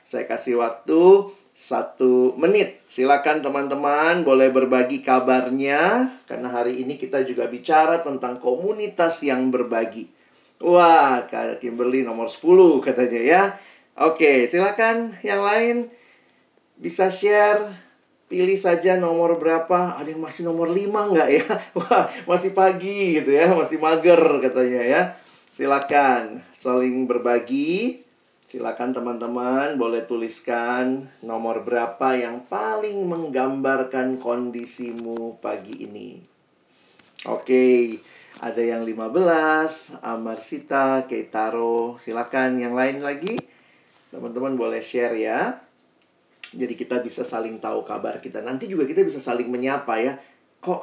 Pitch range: 120-170 Hz